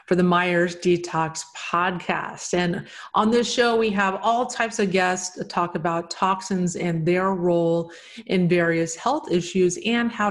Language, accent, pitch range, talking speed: English, American, 170-195 Hz, 155 wpm